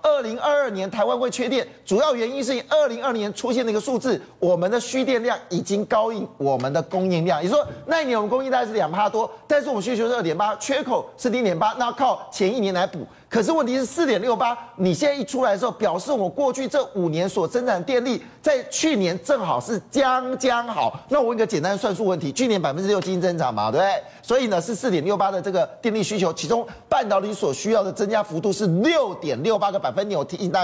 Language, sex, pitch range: Chinese, male, 195-265 Hz